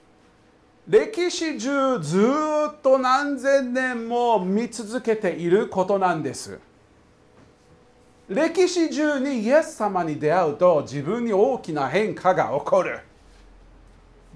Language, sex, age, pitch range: Japanese, male, 50-69, 170-265 Hz